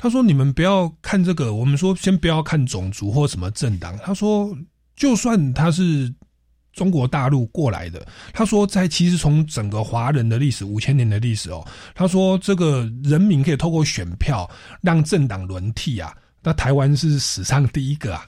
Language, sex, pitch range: Chinese, male, 115-155 Hz